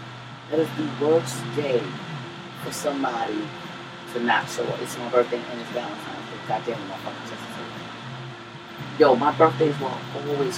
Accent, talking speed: American, 155 wpm